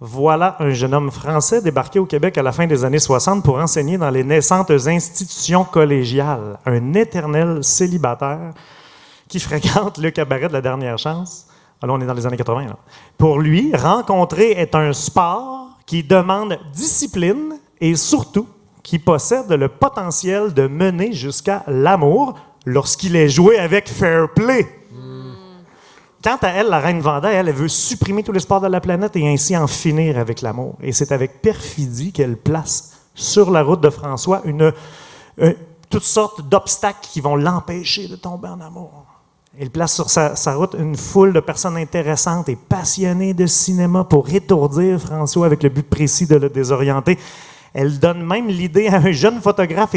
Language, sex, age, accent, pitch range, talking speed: French, male, 30-49, Canadian, 145-190 Hz, 175 wpm